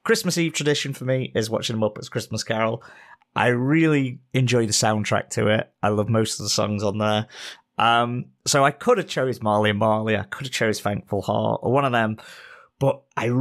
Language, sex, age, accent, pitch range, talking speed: English, male, 30-49, British, 105-135 Hz, 215 wpm